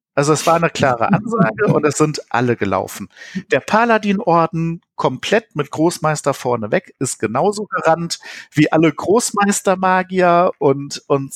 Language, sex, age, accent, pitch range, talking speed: German, male, 50-69, German, 145-190 Hz, 135 wpm